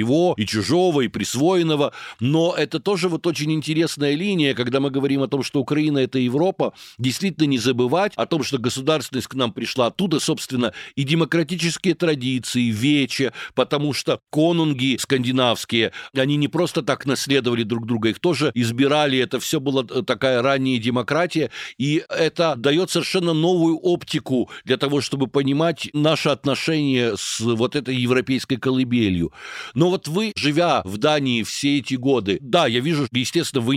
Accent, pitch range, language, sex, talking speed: native, 125-155 Hz, Ukrainian, male, 160 wpm